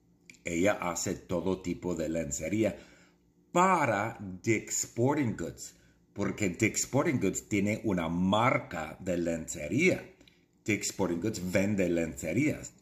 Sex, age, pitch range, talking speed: male, 50-69, 90-130 Hz, 110 wpm